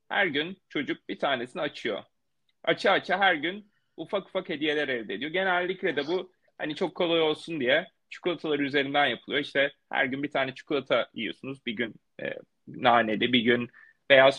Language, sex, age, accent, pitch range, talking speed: Turkish, male, 30-49, native, 135-185 Hz, 165 wpm